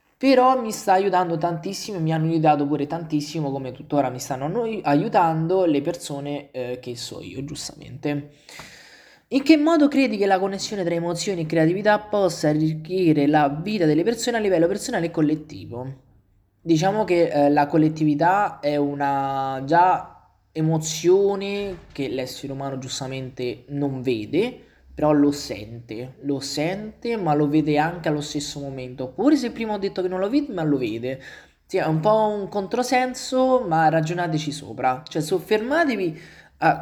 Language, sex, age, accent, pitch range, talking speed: Italian, male, 20-39, native, 145-195 Hz, 155 wpm